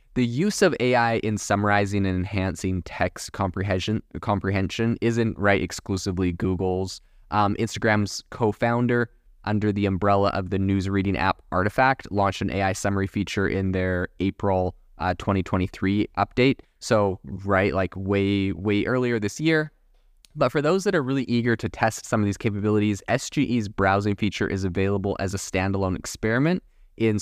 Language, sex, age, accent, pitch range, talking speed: English, male, 20-39, American, 95-110 Hz, 150 wpm